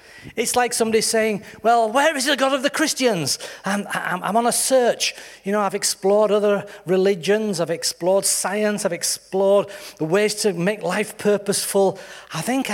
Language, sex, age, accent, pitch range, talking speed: English, male, 40-59, British, 180-250 Hz, 175 wpm